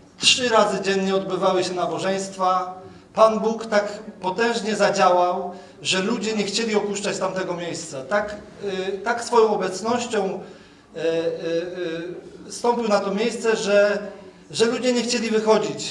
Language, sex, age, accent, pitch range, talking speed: Polish, male, 40-59, native, 185-215 Hz, 130 wpm